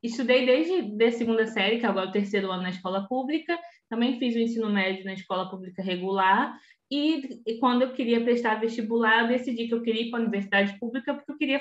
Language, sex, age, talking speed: Portuguese, female, 20-39, 225 wpm